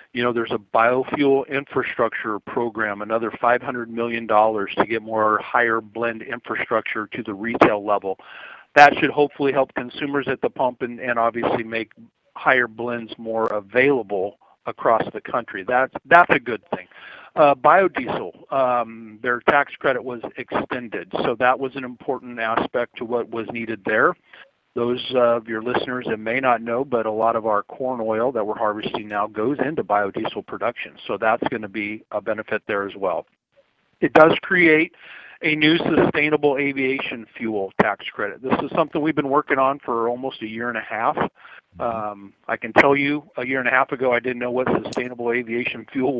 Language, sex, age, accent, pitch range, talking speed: English, male, 50-69, American, 115-135 Hz, 180 wpm